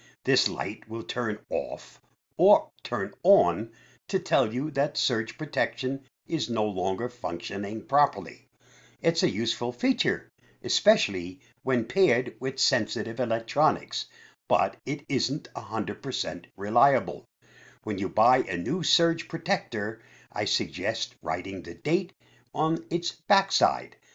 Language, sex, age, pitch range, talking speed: English, male, 60-79, 100-165 Hz, 120 wpm